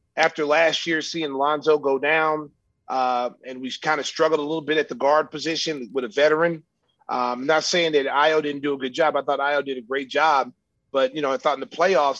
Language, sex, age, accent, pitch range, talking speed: English, male, 30-49, American, 135-155 Hz, 240 wpm